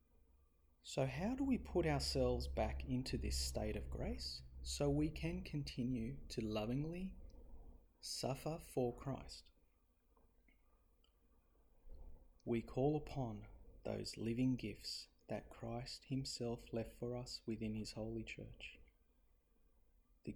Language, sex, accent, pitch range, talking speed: English, male, Australian, 90-130 Hz, 110 wpm